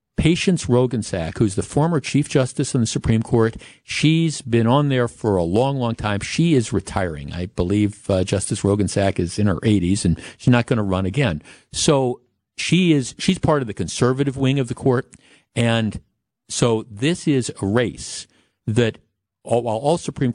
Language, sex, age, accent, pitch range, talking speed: English, male, 50-69, American, 105-140 Hz, 185 wpm